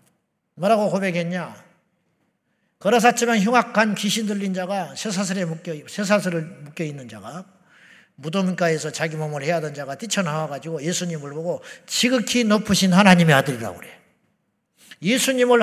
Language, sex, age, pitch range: Korean, male, 50-69, 175-230 Hz